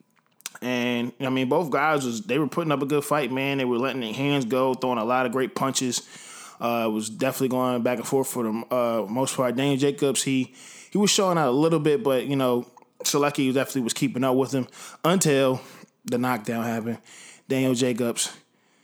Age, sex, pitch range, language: 20-39, male, 115-135 Hz, English